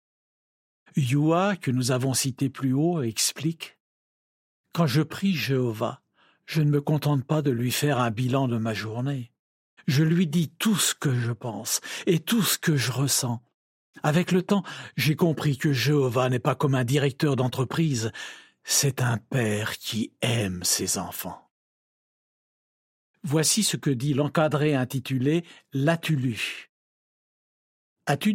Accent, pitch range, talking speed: French, 120-160 Hz, 145 wpm